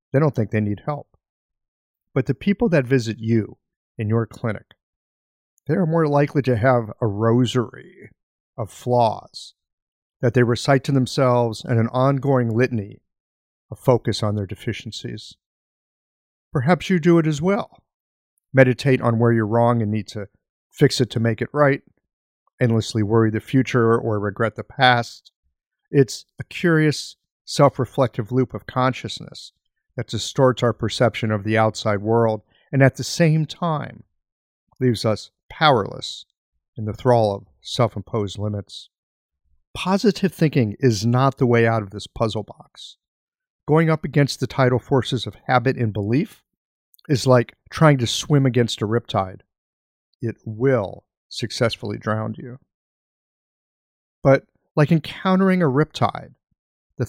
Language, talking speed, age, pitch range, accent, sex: English, 145 wpm, 50-69, 110-135 Hz, American, male